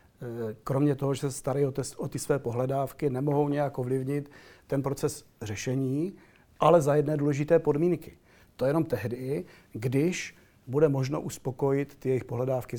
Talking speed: 145 wpm